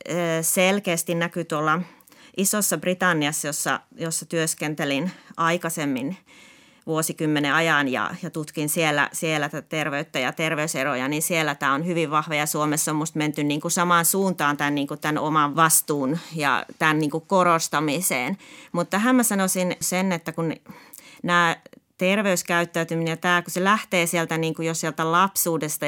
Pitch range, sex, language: 150-175 Hz, female, Finnish